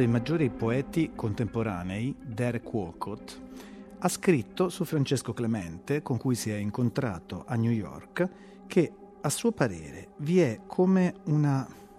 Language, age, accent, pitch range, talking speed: Italian, 40-59, native, 115-175 Hz, 135 wpm